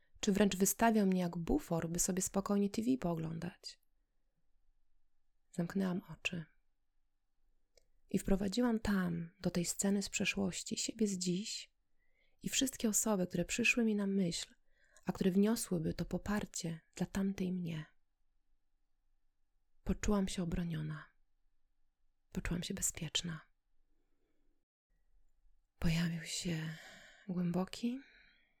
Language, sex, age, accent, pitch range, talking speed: Polish, female, 20-39, native, 160-195 Hz, 105 wpm